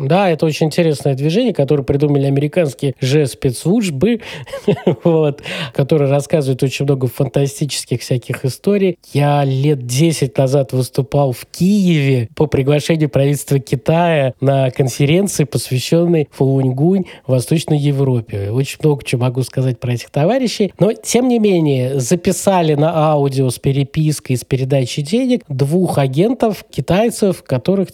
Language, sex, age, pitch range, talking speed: Russian, male, 20-39, 130-175 Hz, 130 wpm